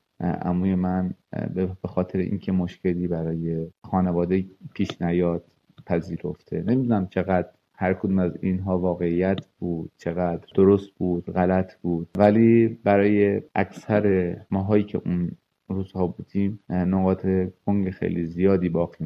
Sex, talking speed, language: male, 120 wpm, Persian